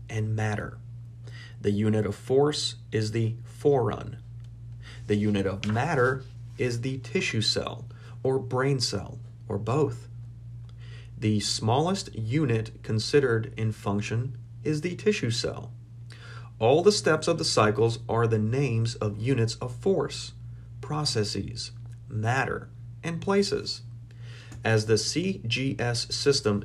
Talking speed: 120 wpm